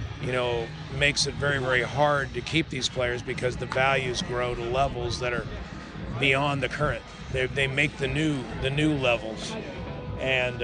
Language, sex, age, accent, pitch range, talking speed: English, male, 50-69, American, 130-155 Hz, 175 wpm